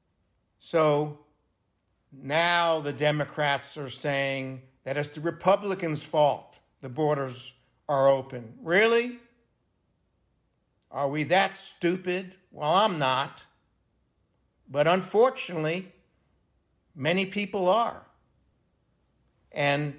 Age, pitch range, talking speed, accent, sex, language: 60-79, 140-180 Hz, 85 wpm, American, male, English